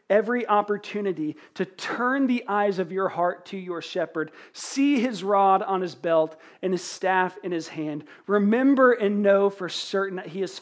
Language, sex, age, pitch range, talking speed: English, male, 40-59, 145-200 Hz, 180 wpm